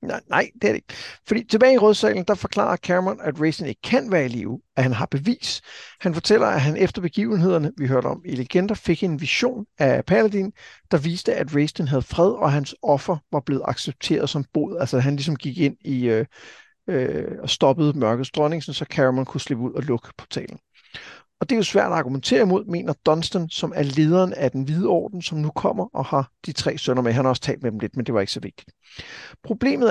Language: Danish